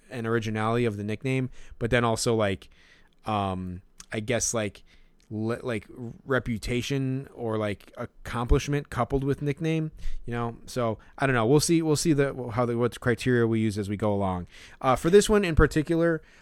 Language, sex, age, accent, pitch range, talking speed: English, male, 20-39, American, 110-140 Hz, 180 wpm